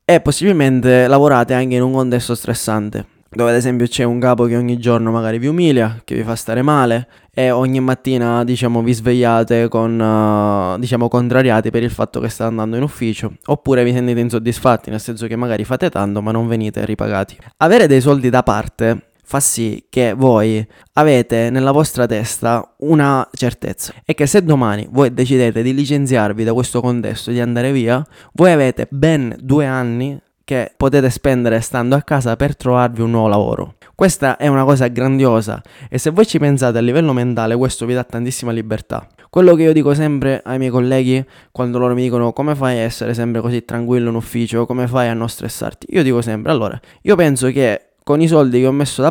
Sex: male